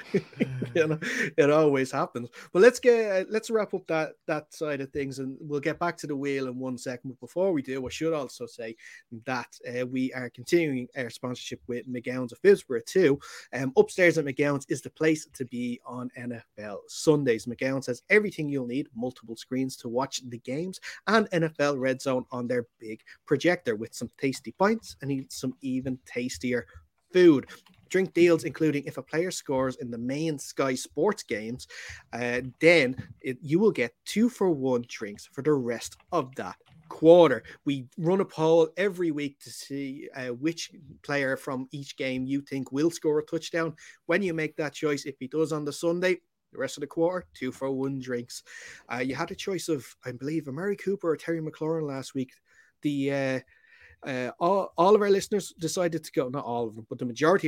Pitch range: 125-170 Hz